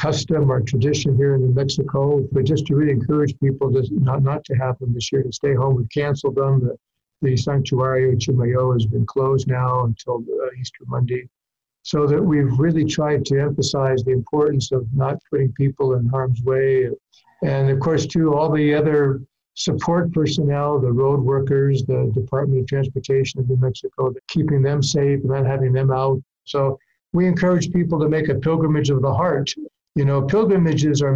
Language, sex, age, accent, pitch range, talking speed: English, male, 60-79, American, 130-150 Hz, 190 wpm